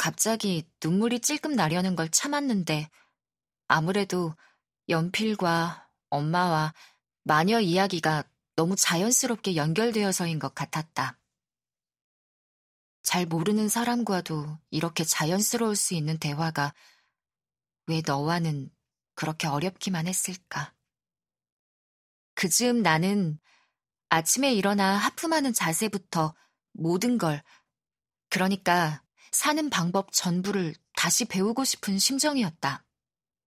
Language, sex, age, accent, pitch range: Korean, female, 20-39, native, 160-210 Hz